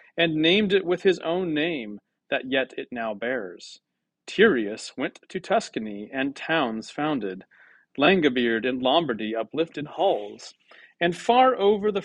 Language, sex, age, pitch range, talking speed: English, male, 40-59, 125-170 Hz, 140 wpm